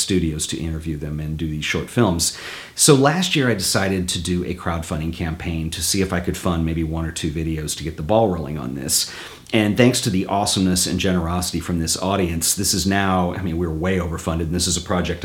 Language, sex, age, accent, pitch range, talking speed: English, male, 40-59, American, 85-105 Hz, 235 wpm